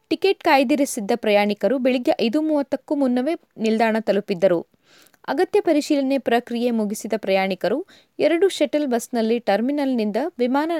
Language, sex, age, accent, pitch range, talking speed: Kannada, female, 20-39, native, 215-290 Hz, 105 wpm